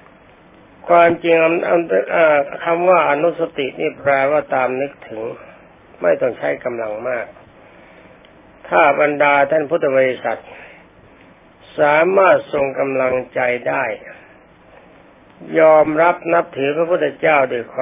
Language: Thai